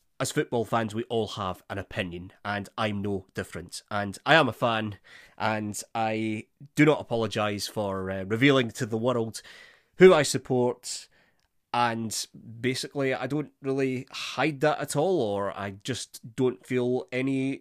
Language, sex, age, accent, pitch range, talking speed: English, male, 30-49, British, 105-135 Hz, 155 wpm